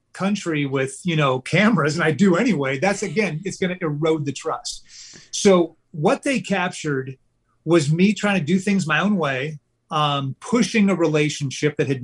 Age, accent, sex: 40-59, American, male